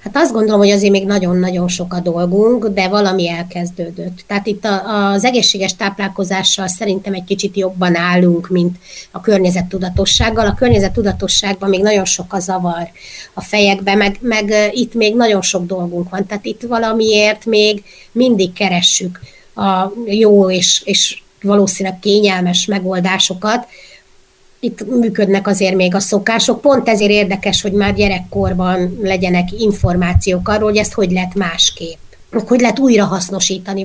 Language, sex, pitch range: Hungarian, female, 185-210 Hz